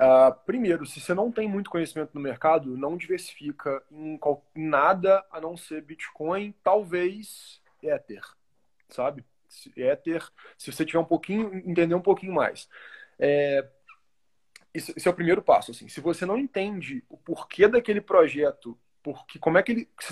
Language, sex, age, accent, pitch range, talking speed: Portuguese, male, 20-39, Brazilian, 155-195 Hz, 160 wpm